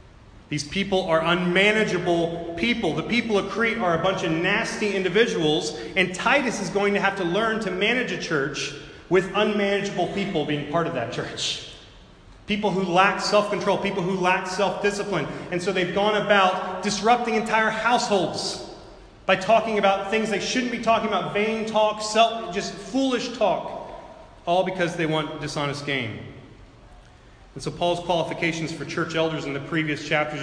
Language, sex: English, male